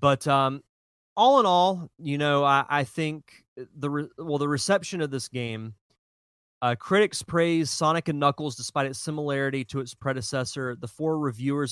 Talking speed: 170 wpm